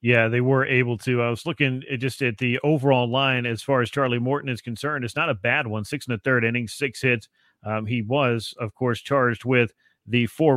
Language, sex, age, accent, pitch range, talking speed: English, male, 40-59, American, 120-140 Hz, 235 wpm